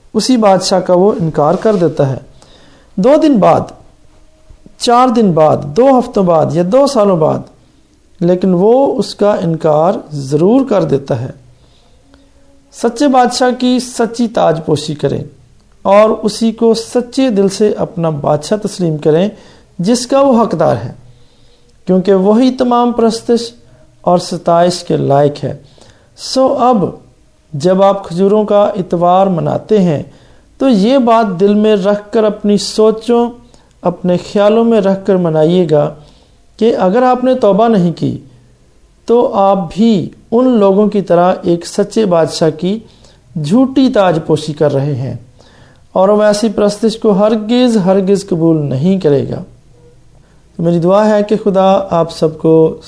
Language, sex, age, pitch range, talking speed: Hindi, male, 50-69, 155-220 Hz, 135 wpm